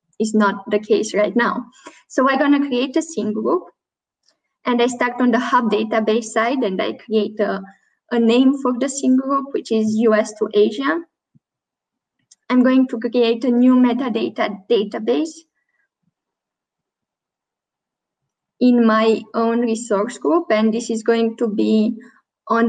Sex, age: female, 10-29